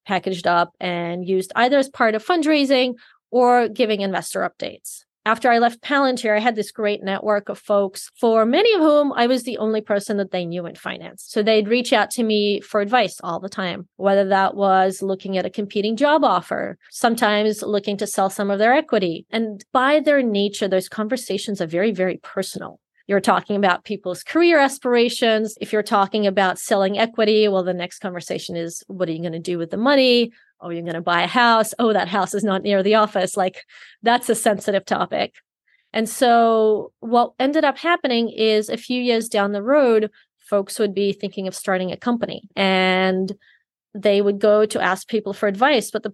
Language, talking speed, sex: English, 200 wpm, female